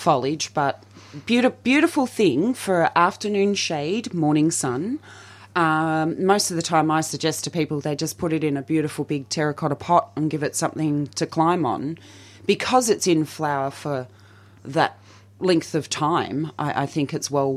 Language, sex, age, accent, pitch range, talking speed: English, female, 30-49, Australian, 135-160 Hz, 165 wpm